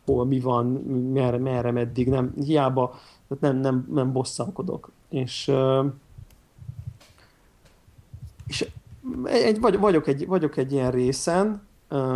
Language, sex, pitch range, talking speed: Hungarian, male, 130-155 Hz, 105 wpm